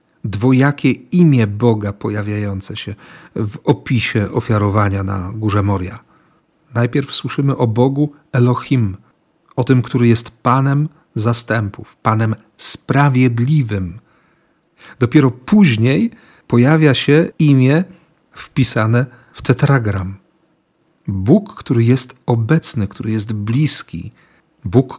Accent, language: native, Polish